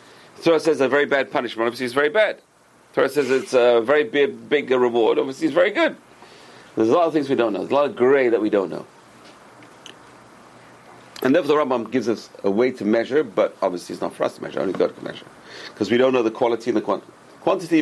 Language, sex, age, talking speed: English, male, 40-59, 240 wpm